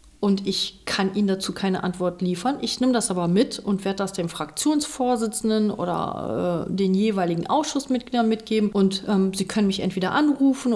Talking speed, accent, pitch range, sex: 175 wpm, German, 190-230 Hz, female